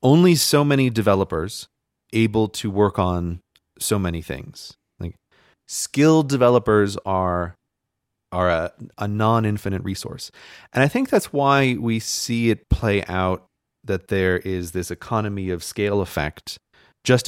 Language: English